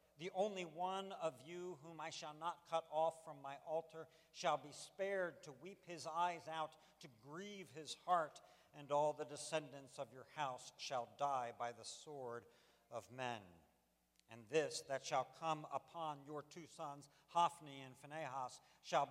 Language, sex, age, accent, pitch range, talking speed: English, male, 60-79, American, 140-170 Hz, 165 wpm